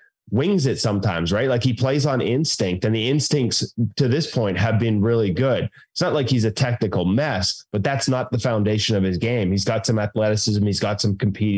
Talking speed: 220 wpm